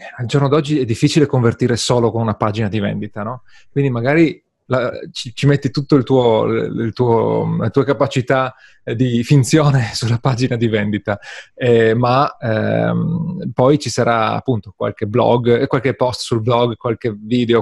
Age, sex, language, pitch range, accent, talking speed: 30-49, male, Italian, 115-135 Hz, native, 165 wpm